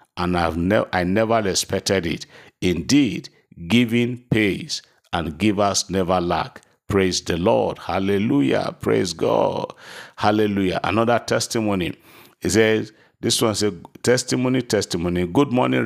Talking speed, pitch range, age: 125 wpm, 95-115 Hz, 50-69